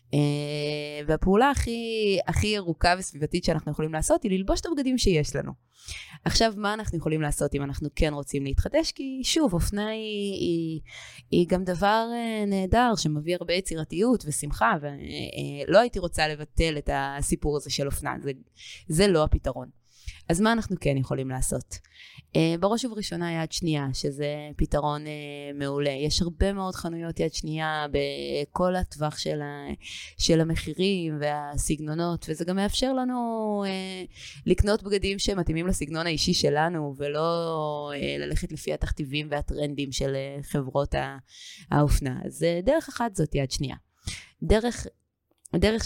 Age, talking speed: 20-39, 130 wpm